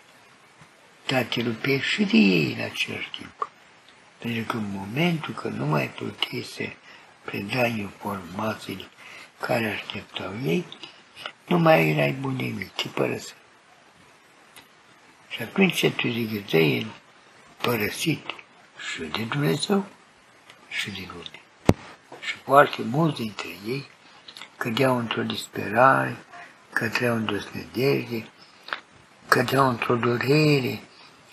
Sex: male